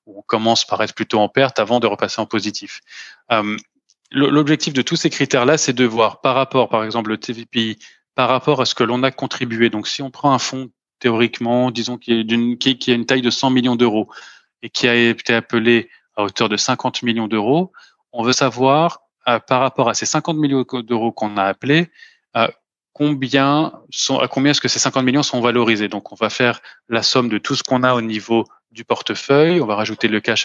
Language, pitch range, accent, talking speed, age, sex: French, 115-135 Hz, French, 215 wpm, 20-39, male